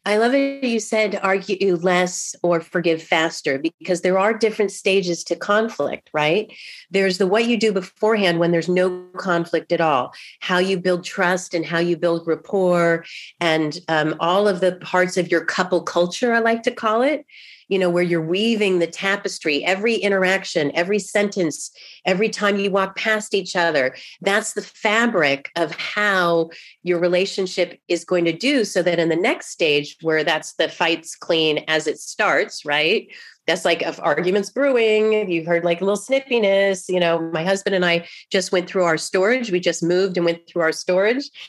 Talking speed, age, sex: 185 wpm, 30-49, female